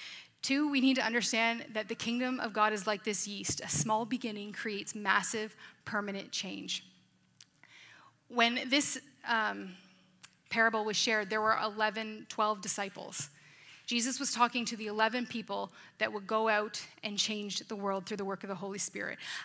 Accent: American